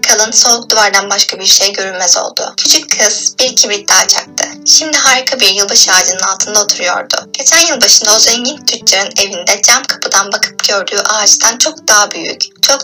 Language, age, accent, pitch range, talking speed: Turkish, 10-29, native, 215-270 Hz, 170 wpm